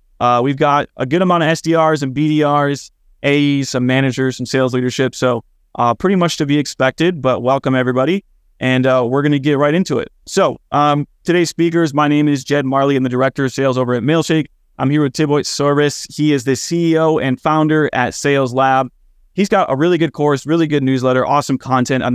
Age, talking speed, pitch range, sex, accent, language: 20-39, 210 wpm, 125-145 Hz, male, American, English